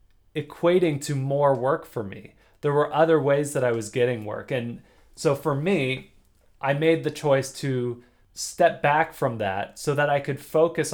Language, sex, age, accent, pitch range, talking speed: English, male, 20-39, American, 120-155 Hz, 180 wpm